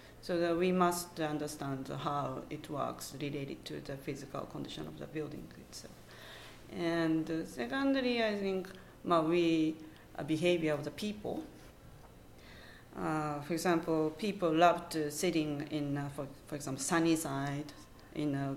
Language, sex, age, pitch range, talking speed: English, female, 40-59, 145-175 Hz, 150 wpm